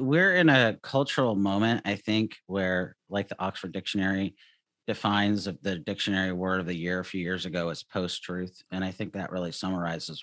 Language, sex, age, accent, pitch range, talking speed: English, male, 40-59, American, 90-110 Hz, 190 wpm